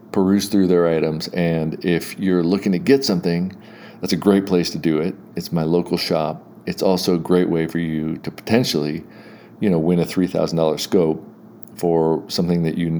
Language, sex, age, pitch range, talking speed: English, male, 40-59, 80-90 Hz, 200 wpm